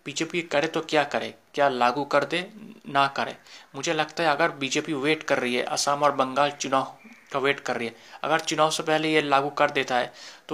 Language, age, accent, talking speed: Hindi, 30-49, native, 220 wpm